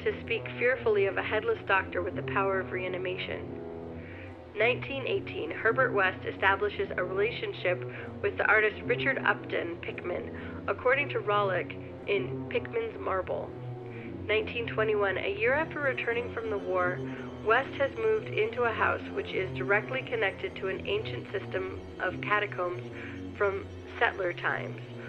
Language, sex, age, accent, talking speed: English, female, 40-59, American, 135 wpm